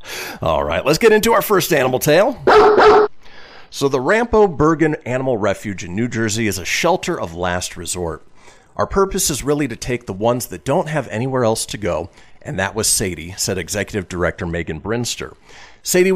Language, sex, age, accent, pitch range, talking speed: English, male, 40-59, American, 95-160 Hz, 180 wpm